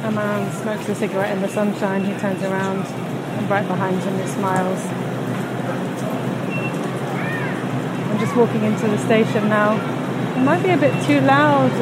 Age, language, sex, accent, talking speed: 30-49, English, female, British, 155 wpm